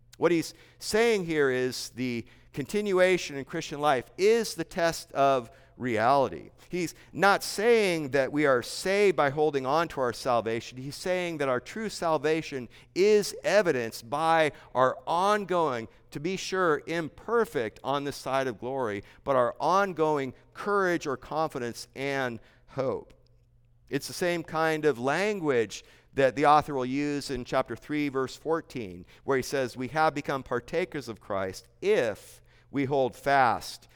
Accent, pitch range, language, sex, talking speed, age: American, 125-165 Hz, English, male, 150 wpm, 50-69